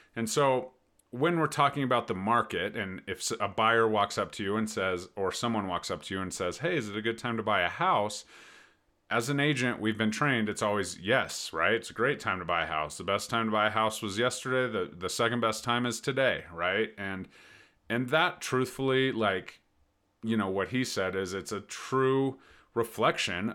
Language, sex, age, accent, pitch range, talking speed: English, male, 30-49, American, 100-130 Hz, 220 wpm